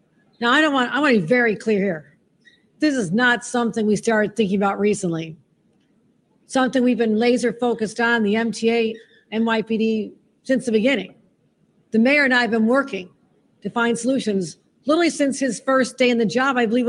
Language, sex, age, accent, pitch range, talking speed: English, female, 50-69, American, 210-245 Hz, 185 wpm